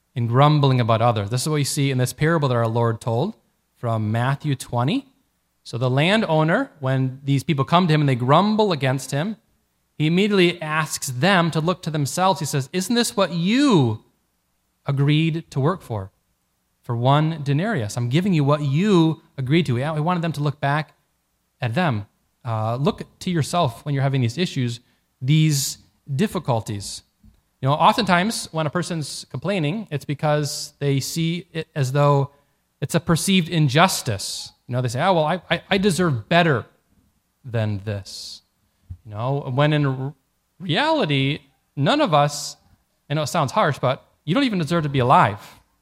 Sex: male